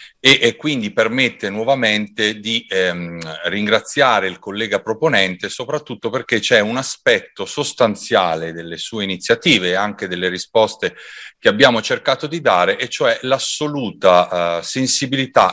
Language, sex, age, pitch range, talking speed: Italian, male, 40-59, 95-125 Hz, 130 wpm